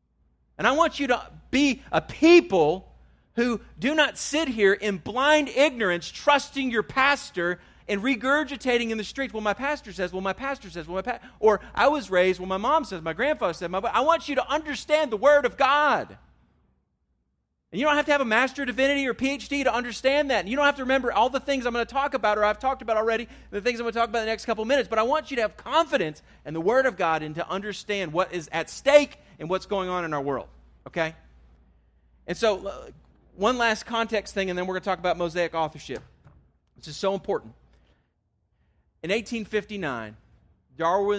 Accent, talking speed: American, 220 wpm